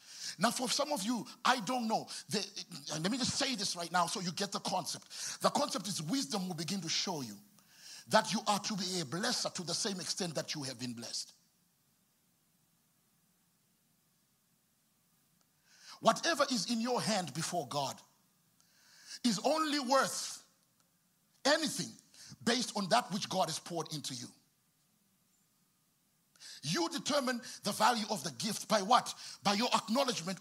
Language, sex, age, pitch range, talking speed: English, male, 50-69, 170-230 Hz, 150 wpm